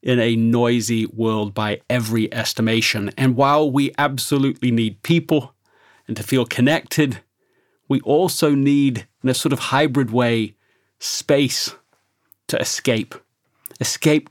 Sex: male